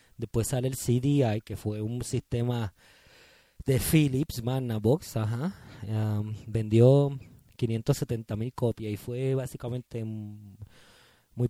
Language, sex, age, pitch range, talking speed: Spanish, male, 20-39, 105-125 Hz, 100 wpm